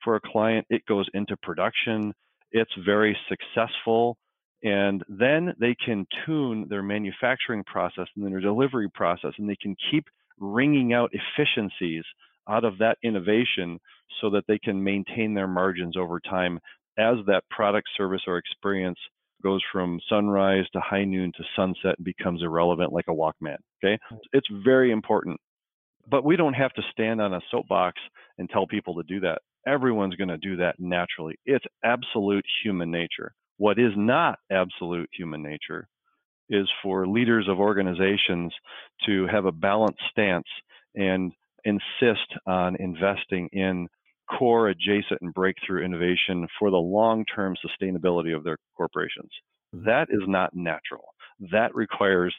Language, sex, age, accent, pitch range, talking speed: English, male, 40-59, American, 90-110 Hz, 150 wpm